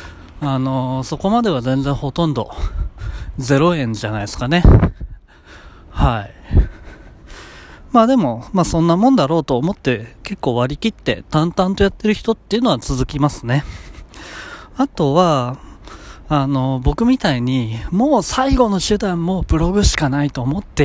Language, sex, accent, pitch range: Japanese, male, native, 110-160 Hz